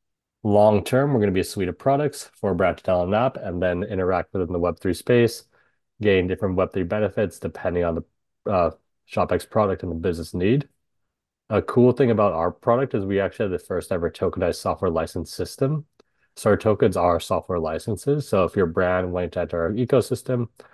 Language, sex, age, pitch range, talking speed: English, male, 30-49, 90-115 Hz, 195 wpm